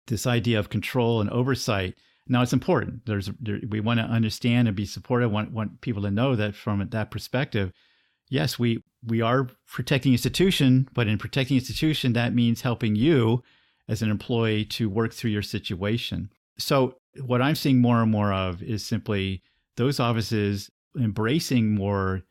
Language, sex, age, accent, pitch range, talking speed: English, male, 40-59, American, 105-130 Hz, 165 wpm